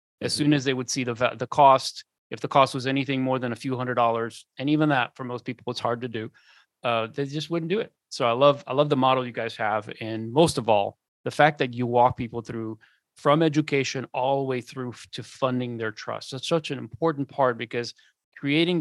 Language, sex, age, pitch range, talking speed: English, male, 30-49, 120-145 Hz, 235 wpm